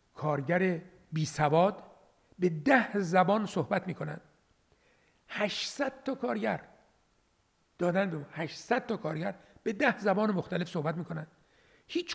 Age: 60-79